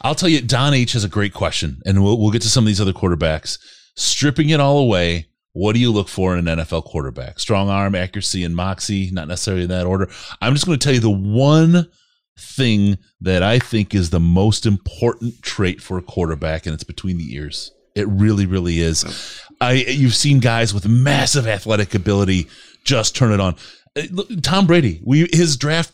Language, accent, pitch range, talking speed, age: English, American, 100-135 Hz, 205 wpm, 30-49